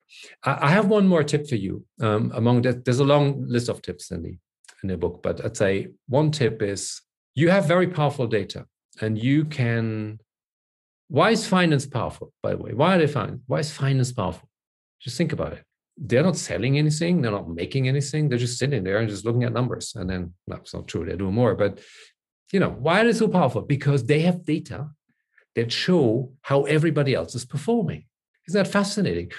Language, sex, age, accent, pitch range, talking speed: English, male, 50-69, German, 110-155 Hz, 210 wpm